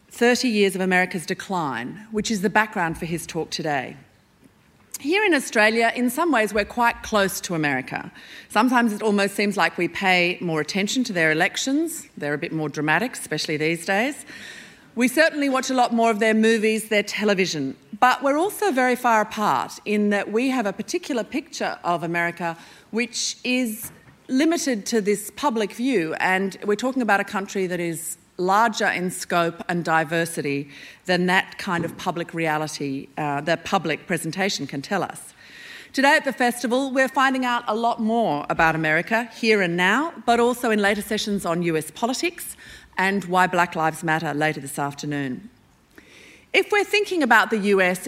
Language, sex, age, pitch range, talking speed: English, female, 40-59, 170-235 Hz, 175 wpm